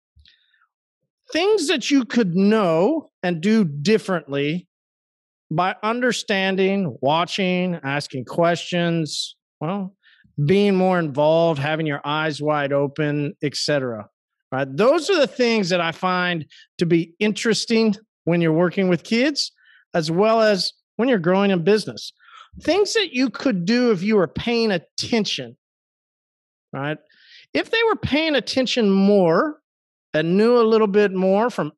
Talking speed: 135 wpm